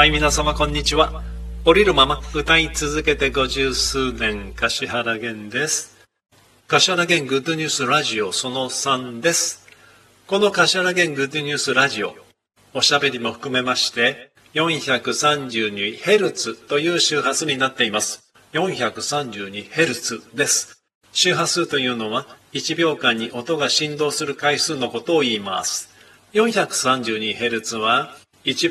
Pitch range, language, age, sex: 120-155 Hz, Japanese, 40-59, male